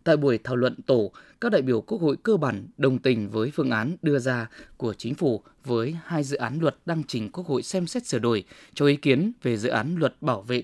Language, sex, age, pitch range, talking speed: Vietnamese, male, 20-39, 125-170 Hz, 250 wpm